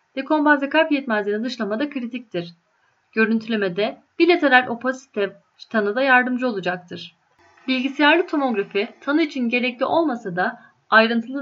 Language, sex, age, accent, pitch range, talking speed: Turkish, female, 10-29, native, 200-275 Hz, 105 wpm